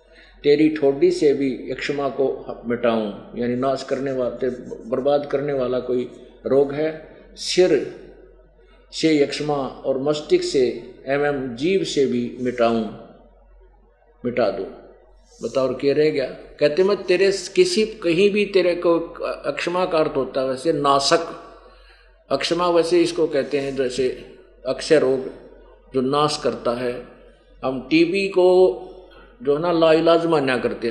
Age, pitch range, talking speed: 50-69, 135-180 Hz, 135 wpm